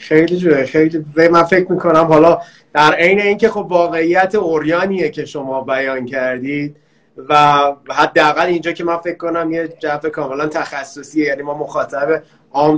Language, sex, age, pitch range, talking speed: Persian, male, 30-49, 145-175 Hz, 155 wpm